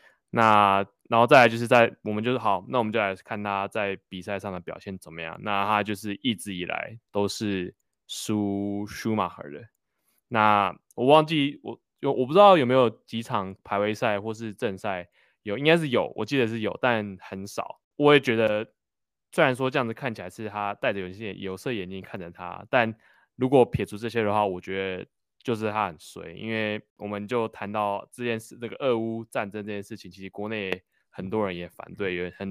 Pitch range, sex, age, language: 95-115 Hz, male, 20-39, Chinese